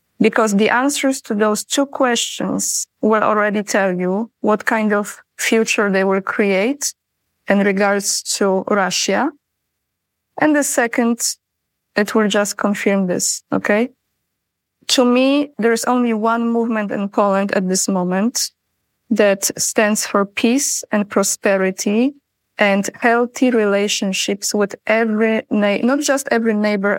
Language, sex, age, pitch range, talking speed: English, female, 20-39, 205-250 Hz, 125 wpm